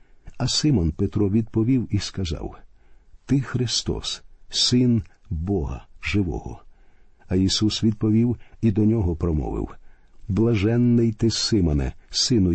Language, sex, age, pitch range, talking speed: Ukrainian, male, 50-69, 85-115 Hz, 105 wpm